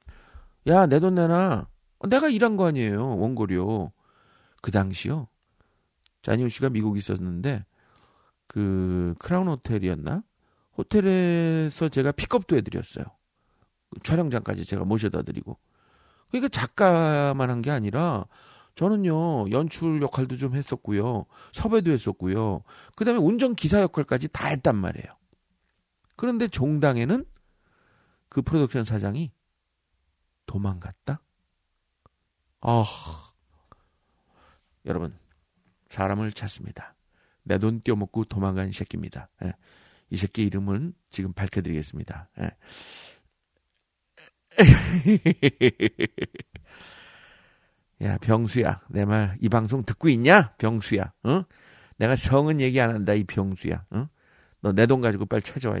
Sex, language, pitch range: male, Korean, 100-155 Hz